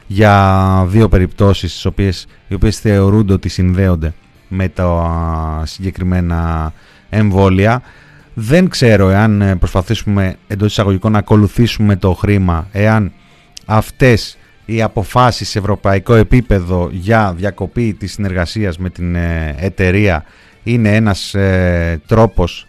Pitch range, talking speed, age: 95-115 Hz, 110 wpm, 30-49